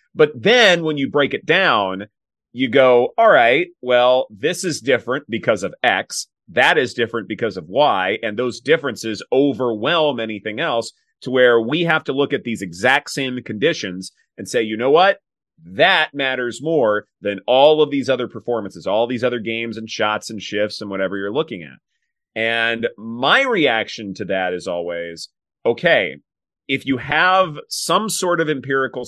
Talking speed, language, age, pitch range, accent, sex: 170 wpm, English, 30-49, 110-155 Hz, American, male